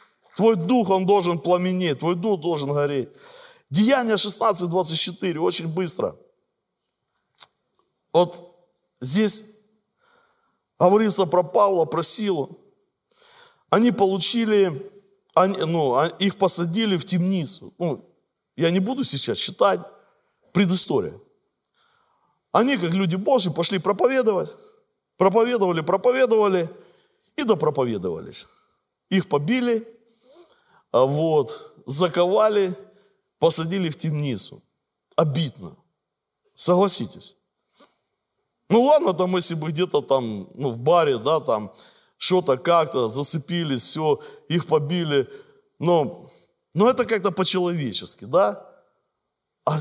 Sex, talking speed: male, 100 wpm